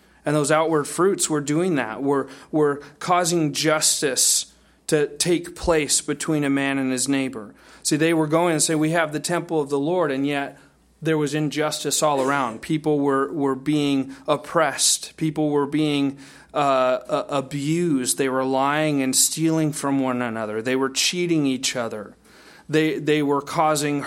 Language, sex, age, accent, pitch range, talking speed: English, male, 30-49, American, 135-155 Hz, 170 wpm